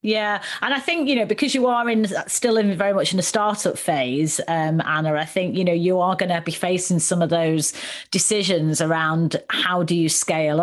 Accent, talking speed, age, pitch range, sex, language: British, 220 wpm, 30-49, 160-190 Hz, female, English